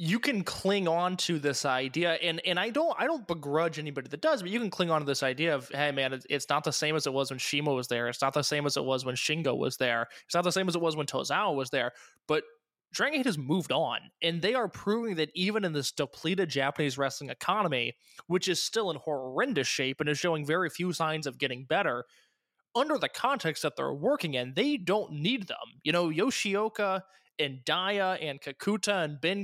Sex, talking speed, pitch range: male, 230 wpm, 145-190 Hz